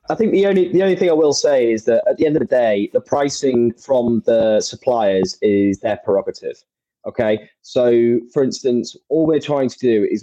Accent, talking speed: British, 210 wpm